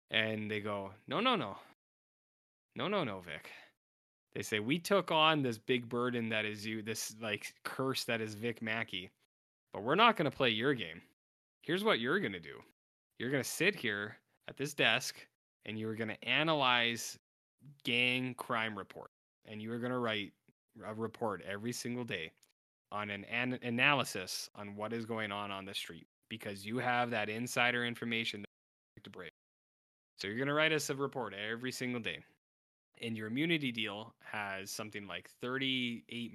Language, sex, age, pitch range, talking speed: English, male, 20-39, 100-120 Hz, 175 wpm